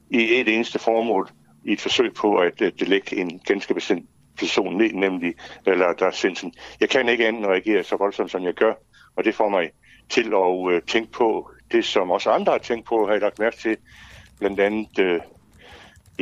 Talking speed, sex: 195 wpm, male